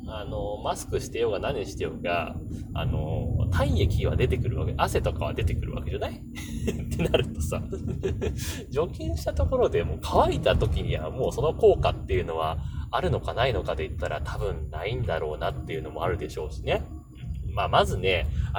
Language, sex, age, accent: Japanese, male, 30-49, native